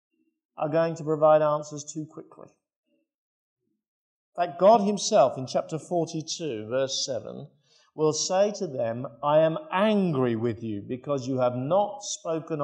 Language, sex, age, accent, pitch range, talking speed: English, male, 50-69, British, 125-180 Hz, 140 wpm